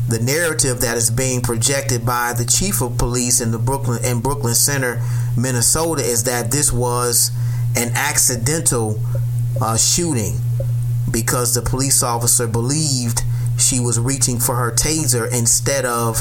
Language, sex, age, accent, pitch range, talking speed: English, male, 30-49, American, 120-125 Hz, 145 wpm